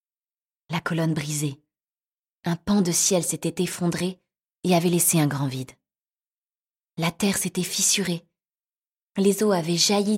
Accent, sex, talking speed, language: French, female, 135 wpm, French